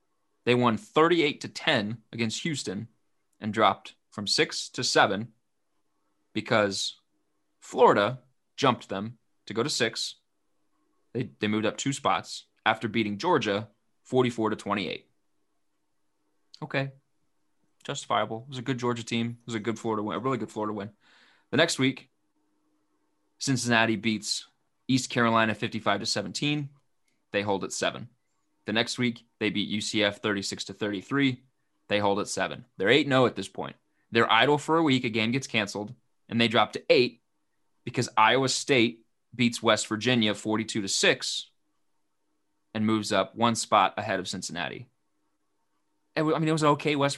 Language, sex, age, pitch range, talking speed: English, male, 20-39, 110-130 Hz, 160 wpm